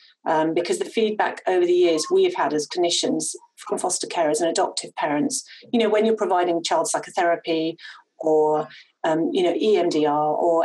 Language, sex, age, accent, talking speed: English, female, 40-59, British, 170 wpm